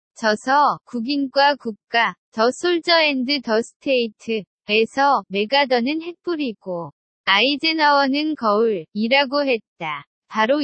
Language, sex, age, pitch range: Korean, female, 20-39, 225-300 Hz